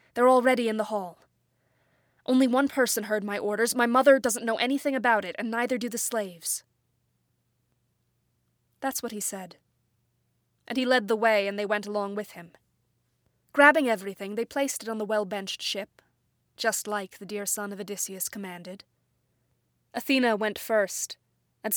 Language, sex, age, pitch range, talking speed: English, female, 20-39, 200-235 Hz, 165 wpm